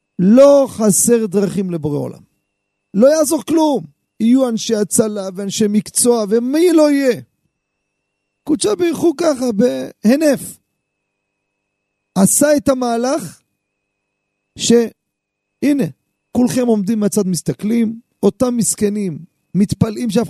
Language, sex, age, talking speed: Hebrew, male, 40-59, 95 wpm